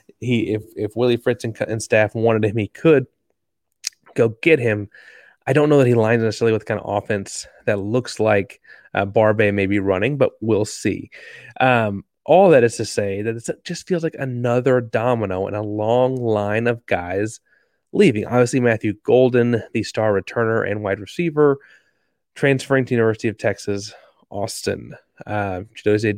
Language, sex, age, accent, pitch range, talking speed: English, male, 30-49, American, 105-125 Hz, 170 wpm